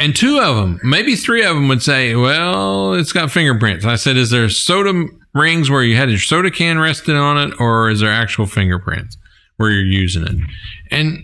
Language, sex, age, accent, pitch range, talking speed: English, male, 50-69, American, 105-145 Hz, 210 wpm